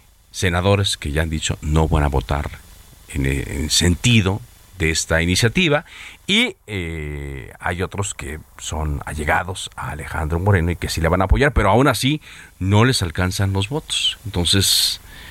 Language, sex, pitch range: Spanish, male, 80-110 Hz